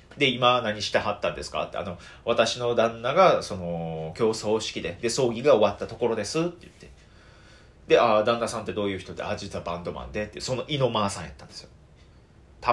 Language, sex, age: Japanese, male, 30-49